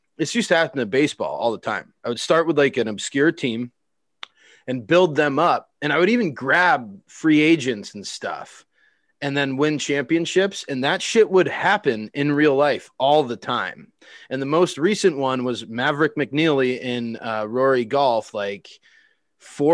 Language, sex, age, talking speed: English, male, 30-49, 180 wpm